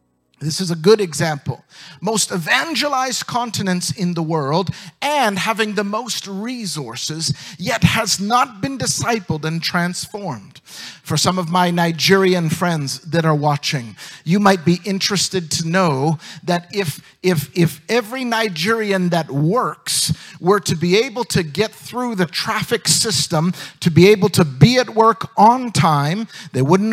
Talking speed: 150 wpm